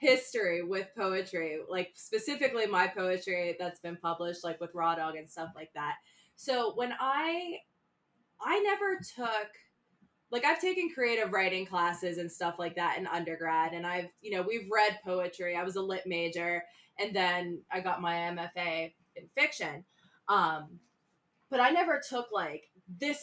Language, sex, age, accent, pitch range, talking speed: English, female, 20-39, American, 175-240 Hz, 165 wpm